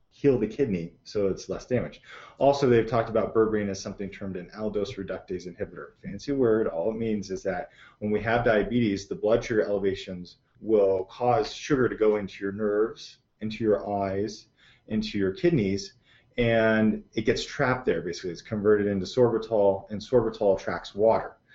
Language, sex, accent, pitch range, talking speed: English, male, American, 95-110 Hz, 175 wpm